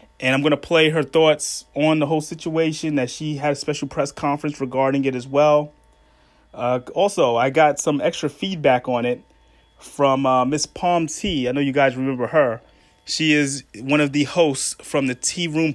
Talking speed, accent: 200 wpm, American